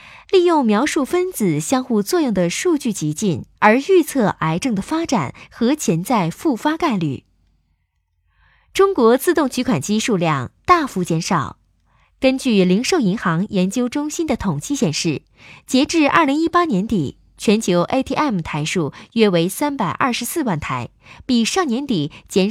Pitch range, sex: 175-270 Hz, female